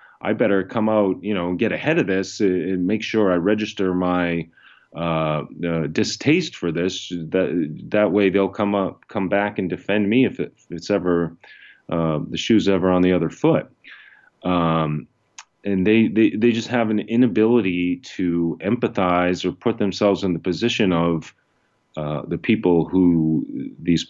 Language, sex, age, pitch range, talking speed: English, male, 30-49, 80-100 Hz, 170 wpm